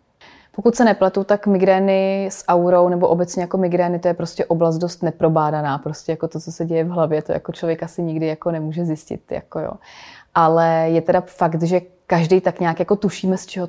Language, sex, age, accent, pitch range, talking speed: Czech, female, 30-49, native, 165-180 Hz, 205 wpm